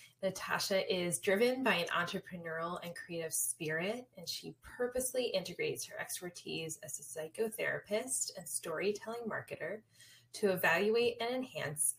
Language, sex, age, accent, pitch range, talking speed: English, female, 10-29, American, 155-205 Hz, 125 wpm